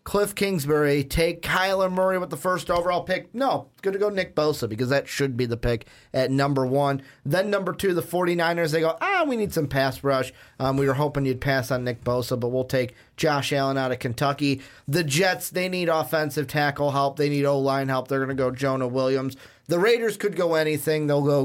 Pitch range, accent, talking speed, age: 135-175 Hz, American, 225 wpm, 30-49